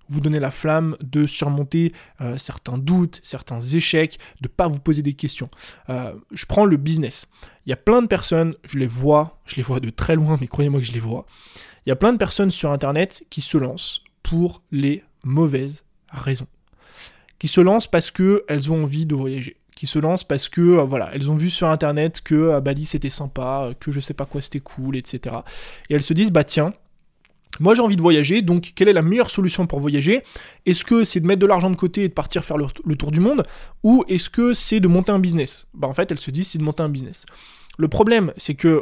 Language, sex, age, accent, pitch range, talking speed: French, male, 20-39, French, 145-185 Hz, 240 wpm